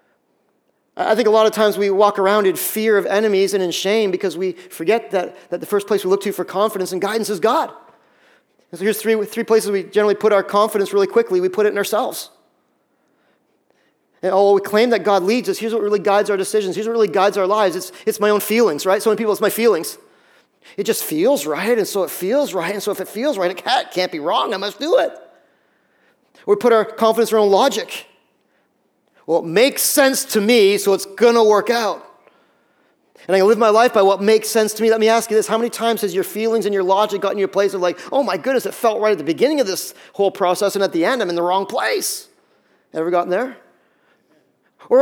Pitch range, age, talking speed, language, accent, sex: 195-230 Hz, 40-59, 245 wpm, English, American, male